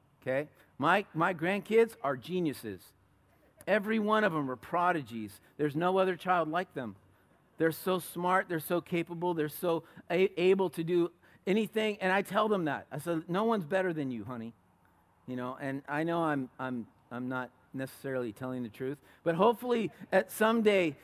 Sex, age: male, 50-69